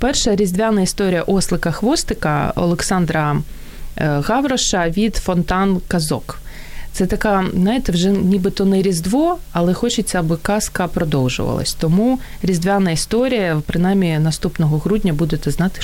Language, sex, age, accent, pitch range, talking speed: Ukrainian, female, 20-39, native, 155-200 Hz, 115 wpm